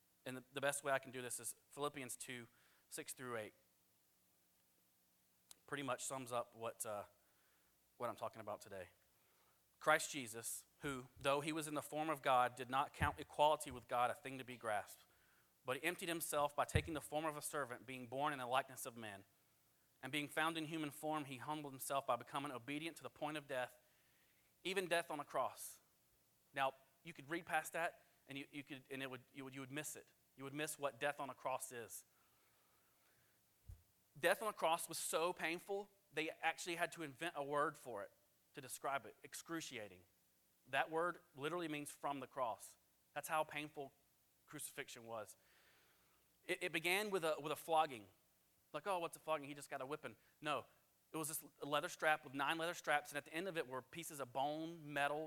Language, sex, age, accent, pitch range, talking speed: English, male, 30-49, American, 125-155 Hz, 200 wpm